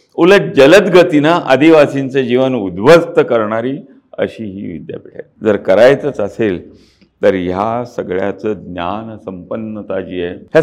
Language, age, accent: Marathi, 50-69, native